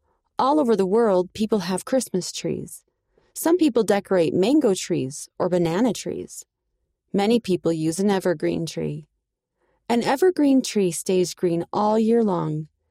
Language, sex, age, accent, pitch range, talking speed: English, female, 30-49, American, 170-225 Hz, 140 wpm